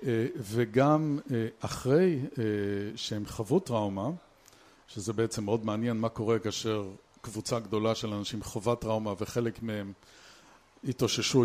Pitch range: 110-130 Hz